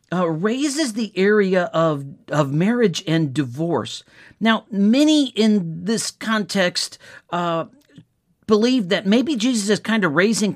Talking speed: 130 wpm